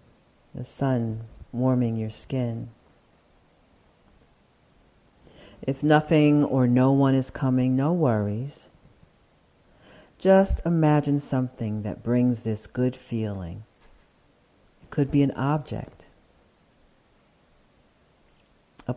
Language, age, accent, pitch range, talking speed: English, 50-69, American, 105-135 Hz, 90 wpm